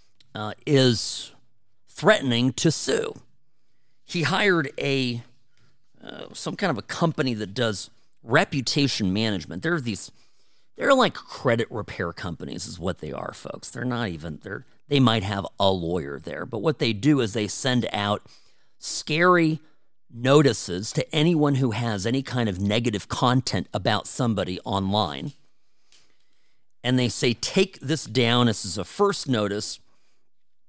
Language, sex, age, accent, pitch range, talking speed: English, male, 40-59, American, 100-140 Hz, 145 wpm